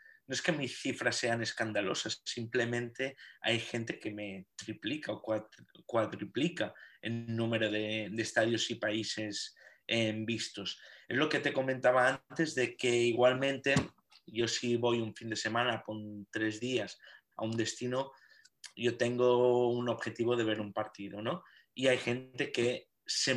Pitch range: 105-120 Hz